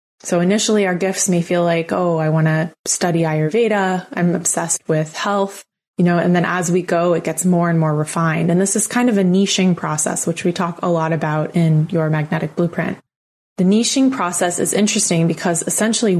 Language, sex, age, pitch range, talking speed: English, female, 20-39, 170-200 Hz, 205 wpm